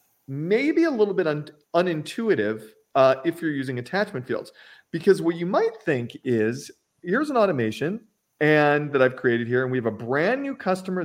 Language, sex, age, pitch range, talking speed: English, male, 40-59, 145-210 Hz, 180 wpm